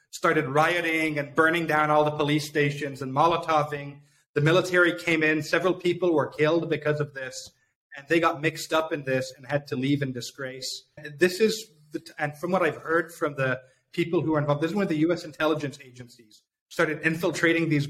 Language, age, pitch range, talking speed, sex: English, 30-49, 140-165 Hz, 200 wpm, male